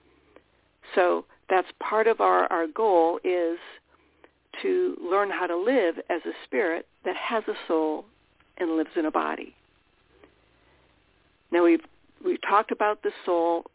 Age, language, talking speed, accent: 60-79, English, 140 wpm, American